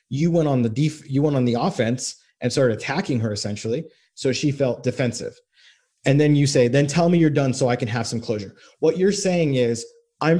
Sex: male